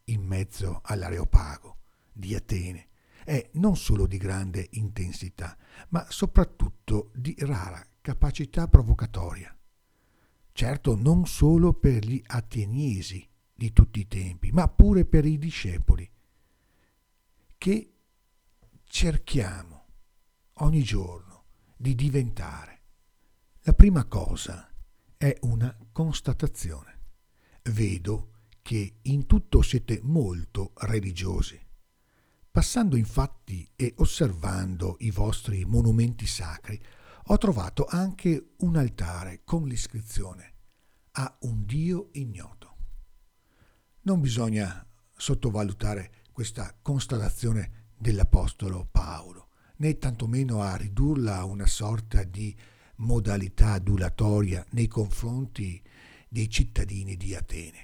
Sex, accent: male, native